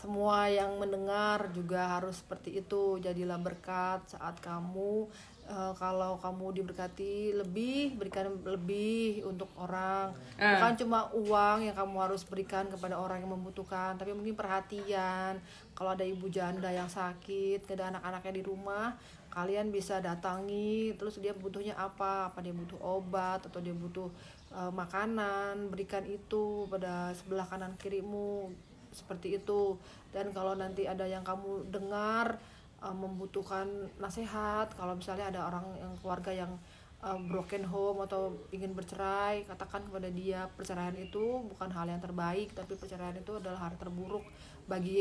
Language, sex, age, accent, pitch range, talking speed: Indonesian, female, 30-49, native, 185-205 Hz, 145 wpm